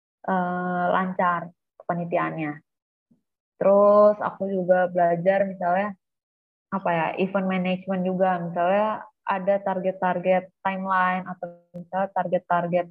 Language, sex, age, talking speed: Indonesian, female, 20-39, 90 wpm